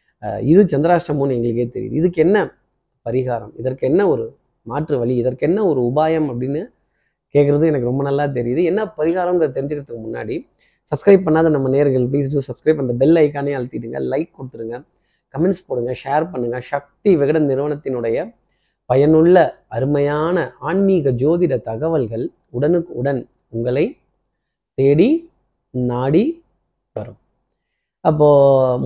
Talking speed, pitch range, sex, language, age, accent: 115 wpm, 130-165 Hz, male, Tamil, 30-49, native